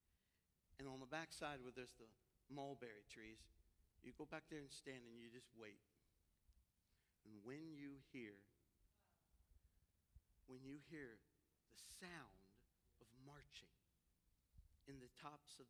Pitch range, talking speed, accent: 85-125 Hz, 135 wpm, American